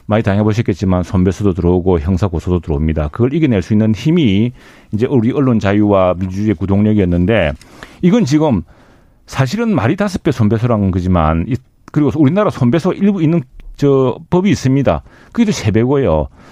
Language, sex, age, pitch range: Korean, male, 40-59, 95-145 Hz